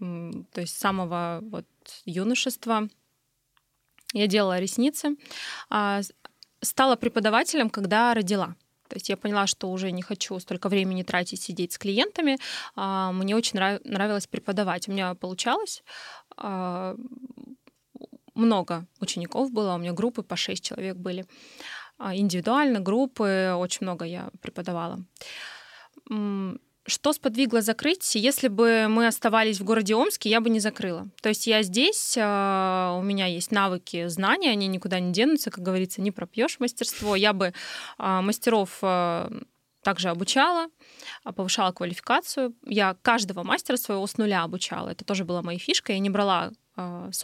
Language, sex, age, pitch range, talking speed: Russian, female, 20-39, 185-235 Hz, 130 wpm